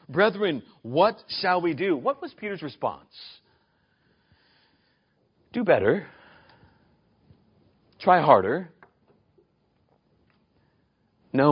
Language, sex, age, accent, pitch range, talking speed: English, male, 40-59, American, 155-215 Hz, 75 wpm